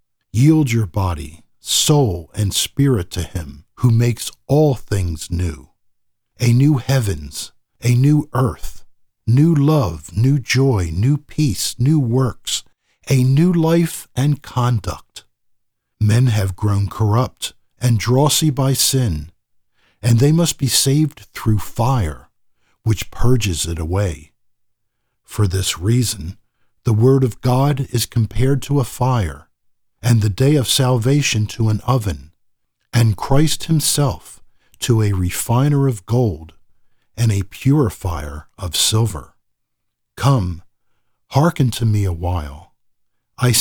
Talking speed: 125 wpm